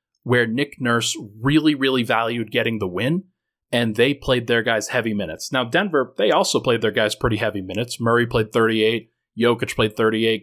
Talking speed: 185 wpm